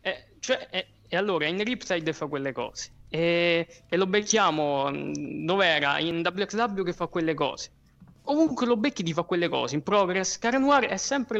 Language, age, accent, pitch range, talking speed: Italian, 20-39, native, 150-205 Hz, 180 wpm